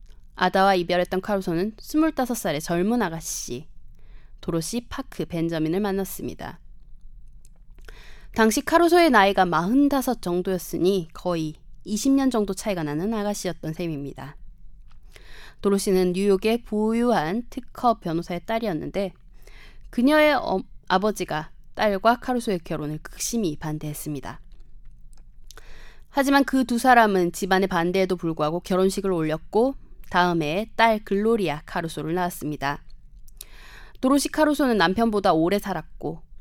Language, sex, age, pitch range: Korean, female, 20-39, 170-230 Hz